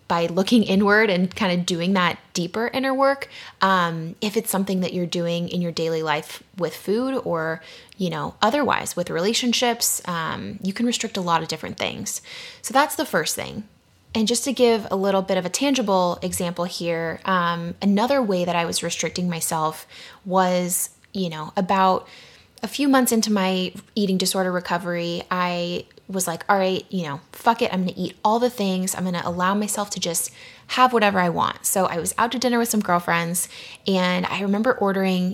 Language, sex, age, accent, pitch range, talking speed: English, female, 20-39, American, 175-220 Hz, 195 wpm